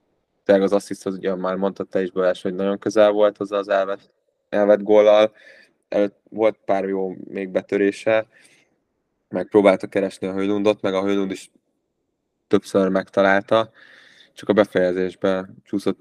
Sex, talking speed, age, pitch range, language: male, 130 wpm, 20-39, 95-105 Hz, Hungarian